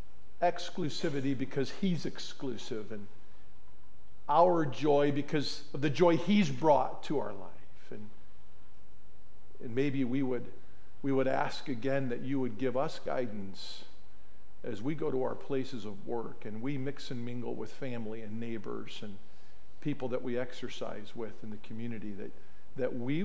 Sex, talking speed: male, 155 wpm